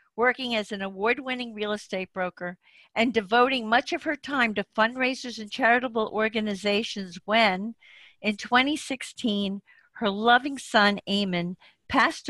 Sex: female